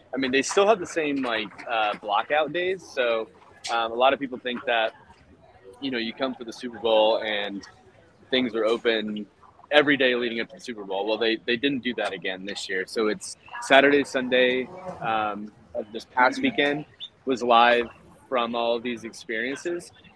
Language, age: English, 30-49